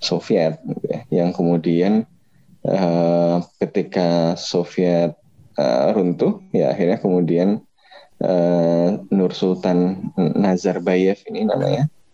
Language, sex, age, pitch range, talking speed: Indonesian, male, 20-39, 90-100 Hz, 85 wpm